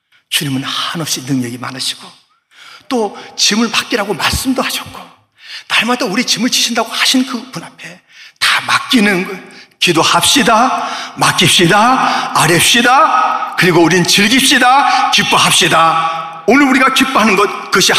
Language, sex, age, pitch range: Korean, male, 40-59, 210-325 Hz